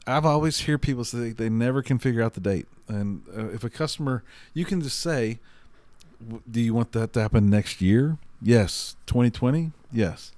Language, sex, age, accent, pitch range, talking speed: English, male, 40-59, American, 100-120 Hz, 195 wpm